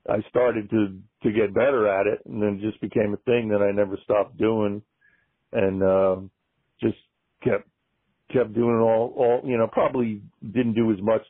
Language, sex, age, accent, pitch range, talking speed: English, male, 50-69, American, 100-115 Hz, 185 wpm